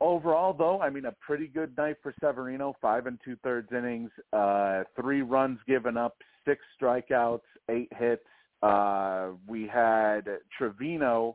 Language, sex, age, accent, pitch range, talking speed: English, male, 40-59, American, 100-120 Hz, 145 wpm